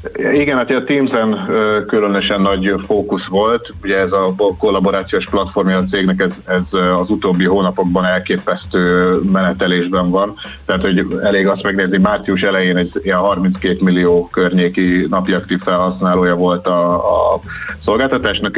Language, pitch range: Hungarian, 90-95 Hz